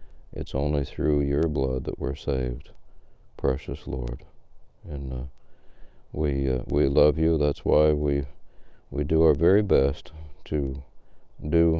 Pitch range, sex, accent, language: 70-85 Hz, male, American, English